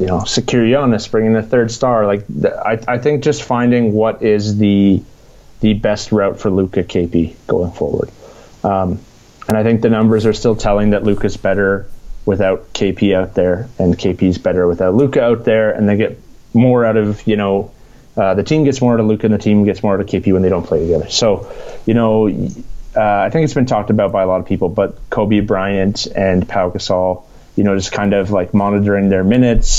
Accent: American